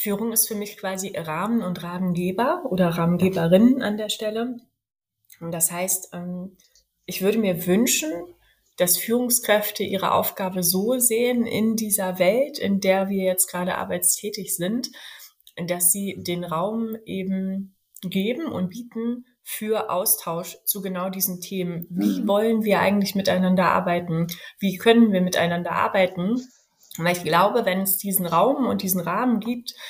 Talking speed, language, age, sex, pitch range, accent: 145 wpm, German, 20-39, female, 180-210 Hz, German